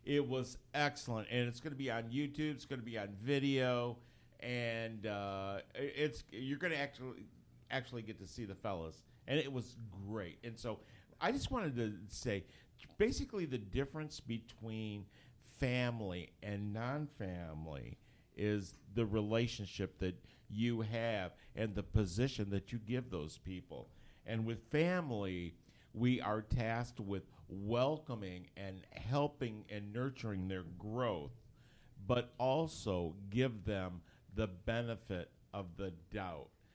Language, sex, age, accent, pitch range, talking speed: English, male, 50-69, American, 100-130 Hz, 140 wpm